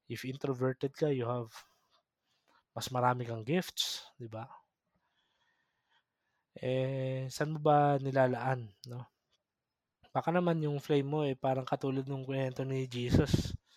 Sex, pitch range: male, 120-150 Hz